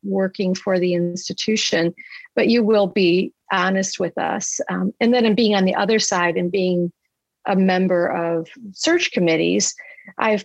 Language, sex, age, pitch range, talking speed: English, female, 40-59, 185-230 Hz, 160 wpm